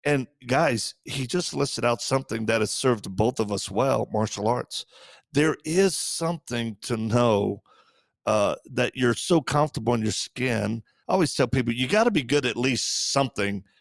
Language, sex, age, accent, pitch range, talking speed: English, male, 40-59, American, 110-140 Hz, 175 wpm